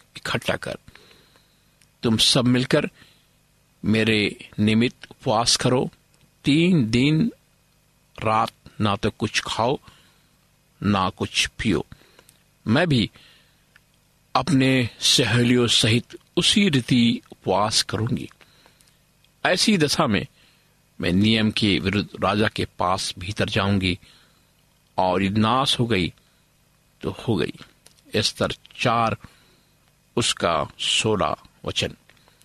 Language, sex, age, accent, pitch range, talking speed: Hindi, male, 50-69, native, 110-145 Hz, 95 wpm